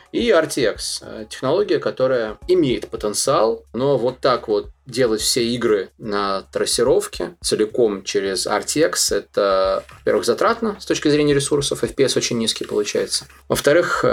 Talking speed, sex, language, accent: 125 wpm, male, Russian, native